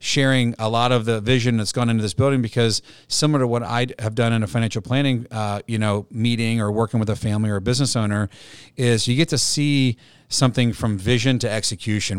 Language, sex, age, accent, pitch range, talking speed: English, male, 40-59, American, 110-125 Hz, 220 wpm